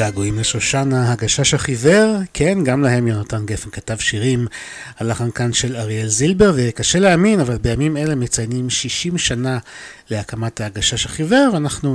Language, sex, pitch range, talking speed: Hebrew, male, 110-140 Hz, 140 wpm